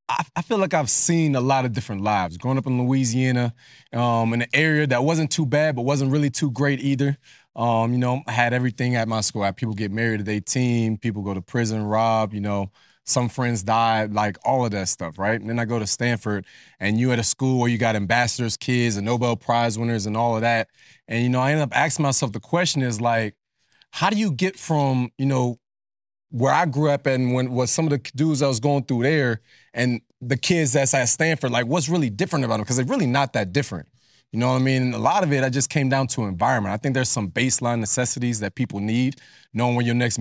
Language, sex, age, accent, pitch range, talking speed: English, male, 20-39, American, 115-135 Hz, 245 wpm